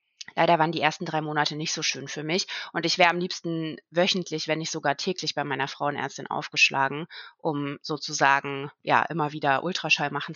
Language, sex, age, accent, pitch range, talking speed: German, female, 20-39, German, 150-180 Hz, 185 wpm